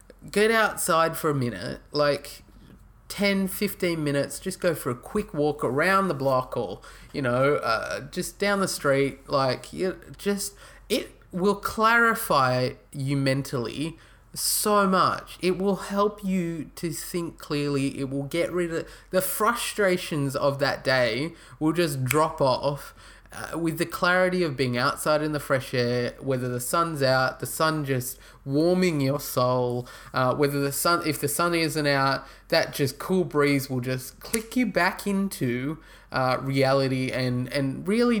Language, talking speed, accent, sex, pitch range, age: English, 160 wpm, Australian, male, 130-185 Hz, 20-39